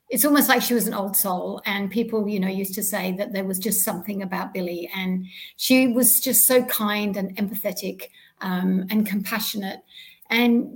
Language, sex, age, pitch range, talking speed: English, female, 60-79, 190-235 Hz, 190 wpm